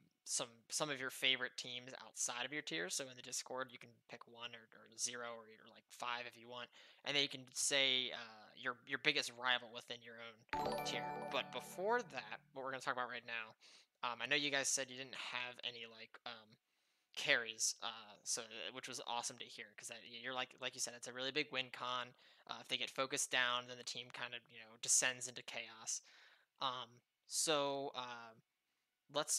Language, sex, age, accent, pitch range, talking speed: English, male, 20-39, American, 120-135 Hz, 210 wpm